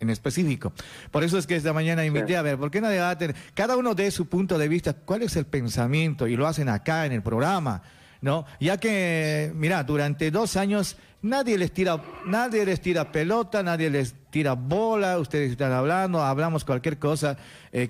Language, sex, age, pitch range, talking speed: Spanish, male, 40-59, 140-175 Hz, 200 wpm